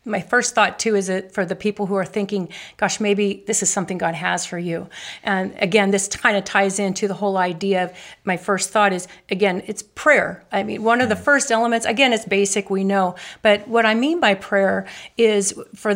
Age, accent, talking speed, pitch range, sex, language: 40-59, American, 220 wpm, 195-225 Hz, female, English